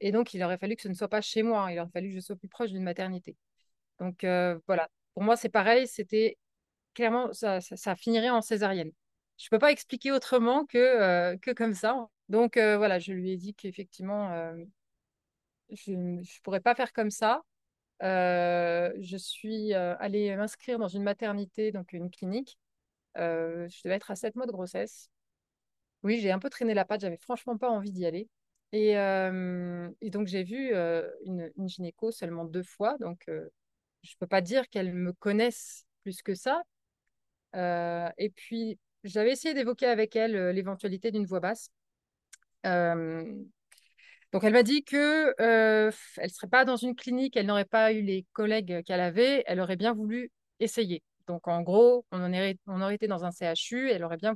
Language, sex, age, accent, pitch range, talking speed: French, female, 30-49, French, 180-230 Hz, 200 wpm